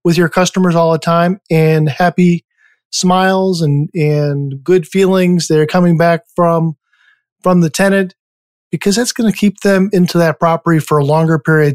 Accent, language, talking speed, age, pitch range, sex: American, English, 170 wpm, 40-59, 160-190 Hz, male